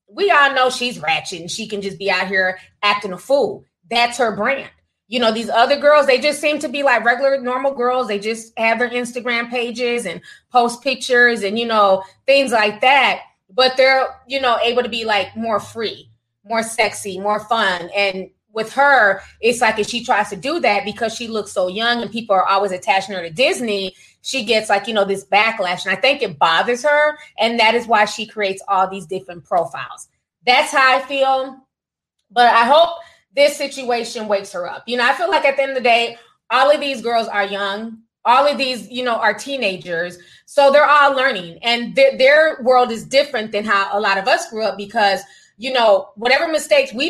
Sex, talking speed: female, 215 wpm